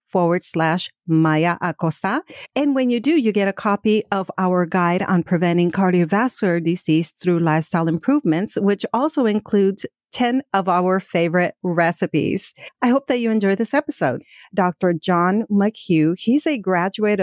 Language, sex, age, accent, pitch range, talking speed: English, female, 50-69, American, 170-205 Hz, 150 wpm